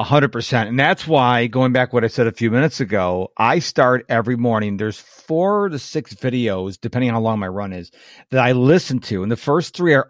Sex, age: male, 50-69